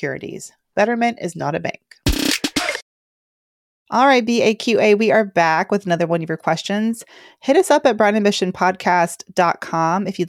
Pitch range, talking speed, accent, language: 170-225 Hz, 145 wpm, American, English